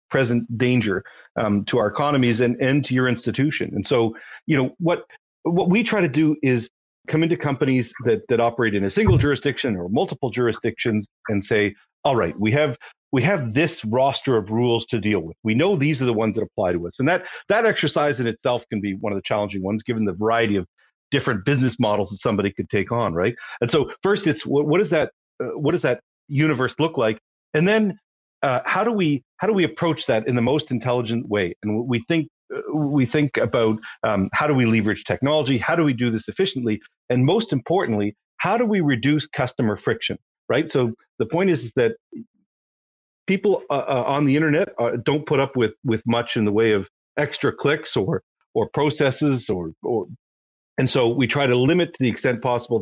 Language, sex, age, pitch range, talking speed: English, male, 40-59, 110-150 Hz, 210 wpm